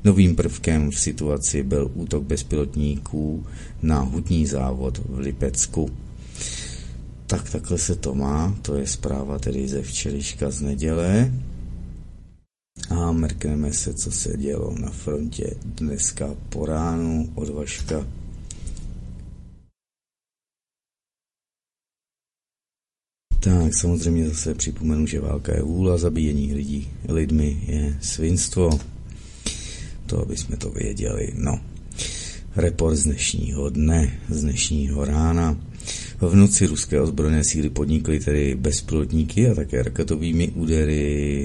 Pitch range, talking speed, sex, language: 70-90 Hz, 105 wpm, male, Czech